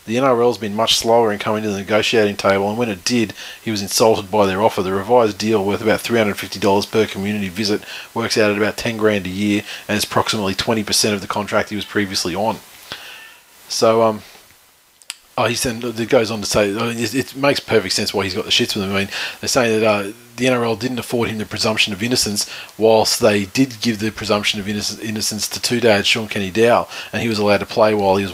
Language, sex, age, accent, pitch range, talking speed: English, male, 30-49, Australian, 100-115 Hz, 235 wpm